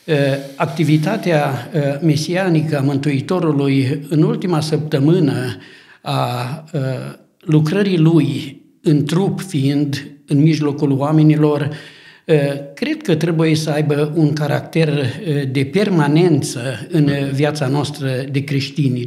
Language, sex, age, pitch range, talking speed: Romanian, male, 60-79, 145-180 Hz, 95 wpm